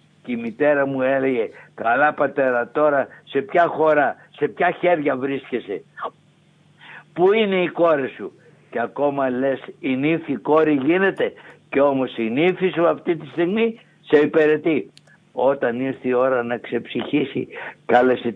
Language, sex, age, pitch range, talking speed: Greek, male, 60-79, 125-160 Hz, 145 wpm